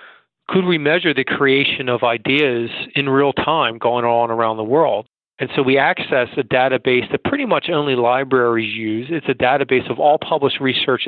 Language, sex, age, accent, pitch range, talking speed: English, male, 40-59, American, 120-145 Hz, 185 wpm